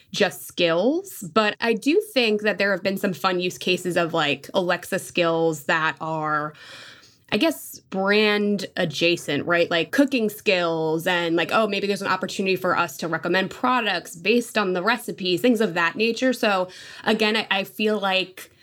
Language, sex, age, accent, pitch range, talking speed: English, female, 20-39, American, 170-215 Hz, 175 wpm